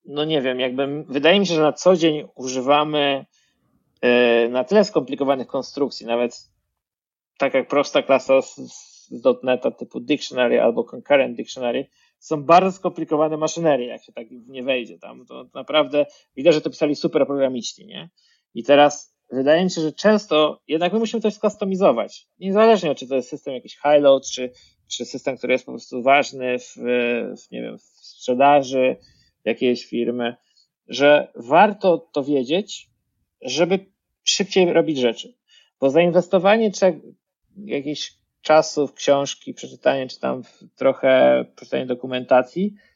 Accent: native